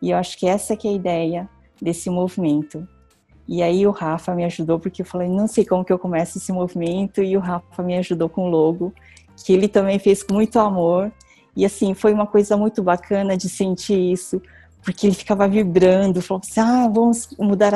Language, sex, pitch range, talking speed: Portuguese, female, 180-215 Hz, 210 wpm